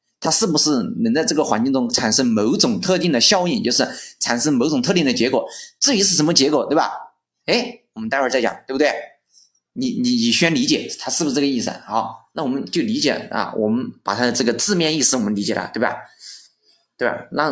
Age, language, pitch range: 20-39, Chinese, 140-230 Hz